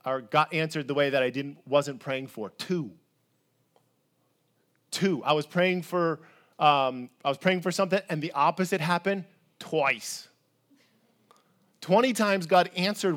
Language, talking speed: English, 145 wpm